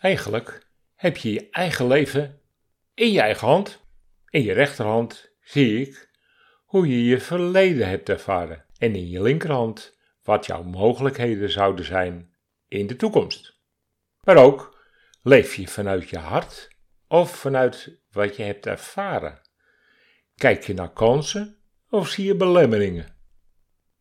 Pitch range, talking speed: 100-145 Hz, 135 wpm